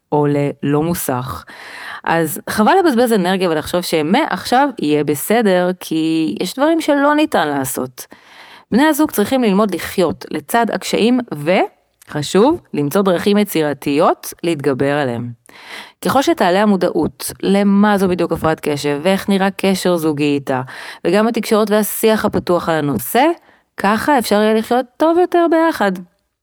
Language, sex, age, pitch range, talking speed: Hebrew, female, 30-49, 155-220 Hz, 125 wpm